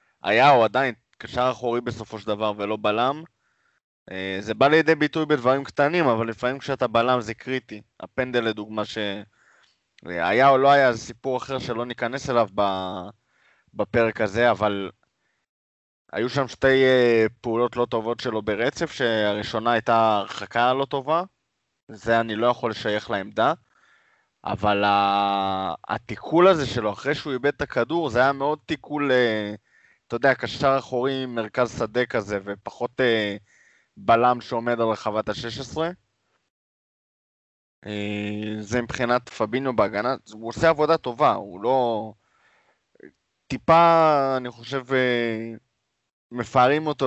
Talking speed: 125 wpm